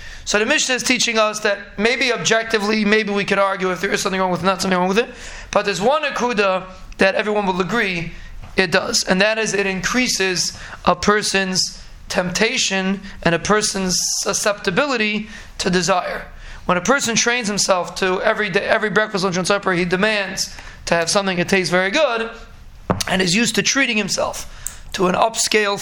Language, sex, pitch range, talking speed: English, male, 185-215 Hz, 185 wpm